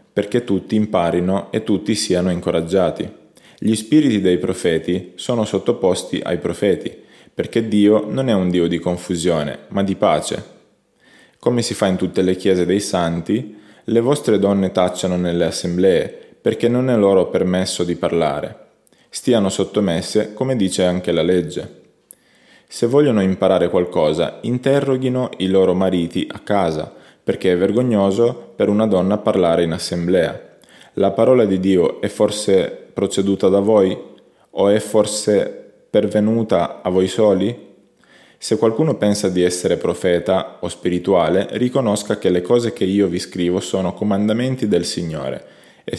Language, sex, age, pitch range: Italian, male, 20-39, 90-110 Hz